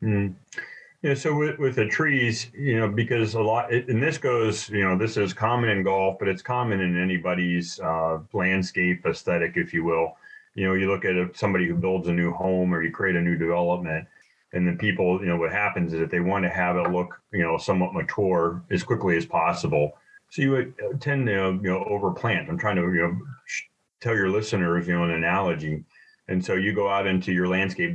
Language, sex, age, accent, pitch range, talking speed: English, male, 30-49, American, 85-100 Hz, 220 wpm